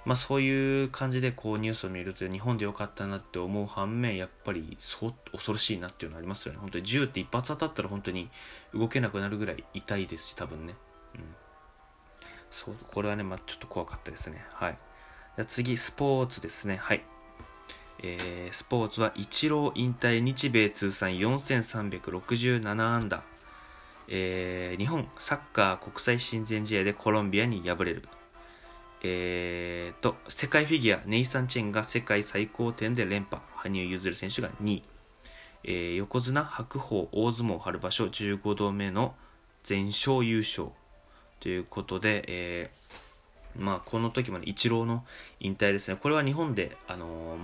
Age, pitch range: 20-39, 95-120 Hz